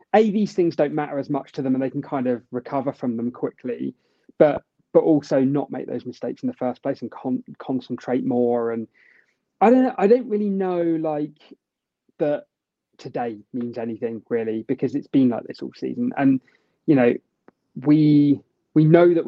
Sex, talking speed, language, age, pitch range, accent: male, 190 wpm, English, 20-39, 120-155 Hz, British